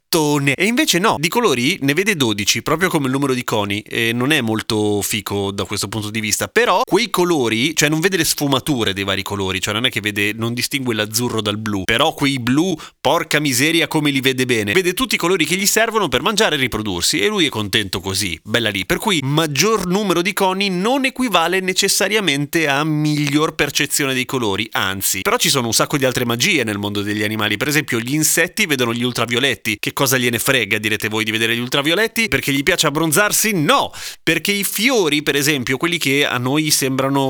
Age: 30-49